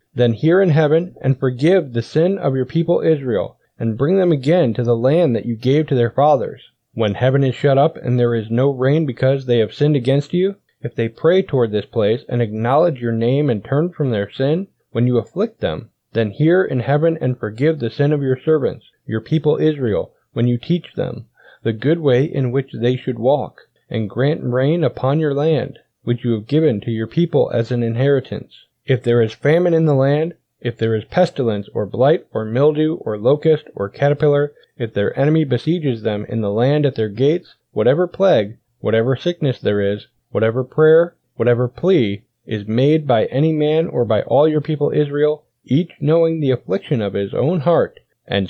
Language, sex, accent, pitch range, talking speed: English, male, American, 120-155 Hz, 200 wpm